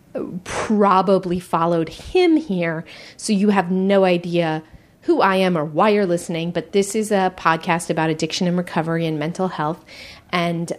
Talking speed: 160 wpm